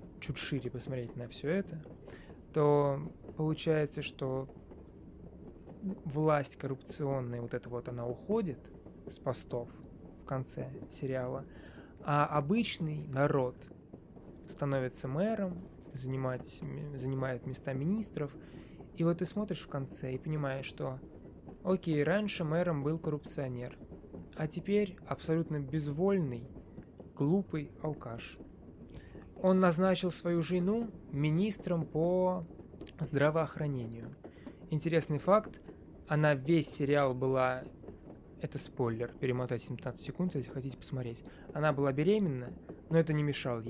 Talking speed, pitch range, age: 105 wpm, 130-175 Hz, 20-39